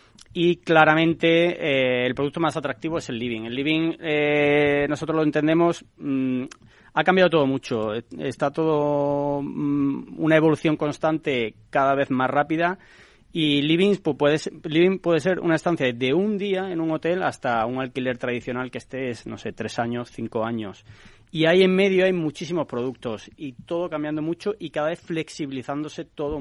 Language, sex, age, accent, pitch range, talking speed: Spanish, male, 30-49, Spanish, 125-160 Hz, 175 wpm